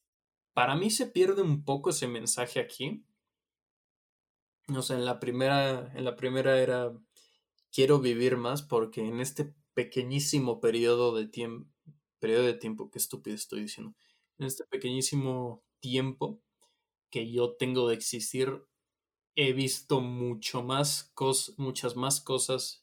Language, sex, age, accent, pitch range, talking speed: Spanish, male, 20-39, Mexican, 120-140 Hz, 135 wpm